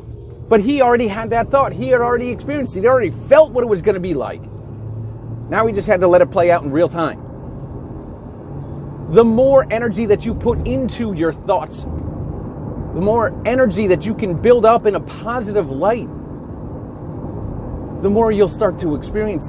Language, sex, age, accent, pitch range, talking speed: English, male, 40-59, American, 145-225 Hz, 180 wpm